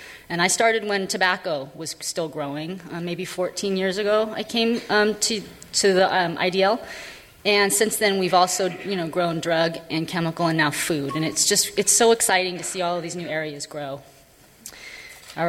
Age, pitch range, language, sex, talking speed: 30-49, 165-215 Hz, English, female, 195 wpm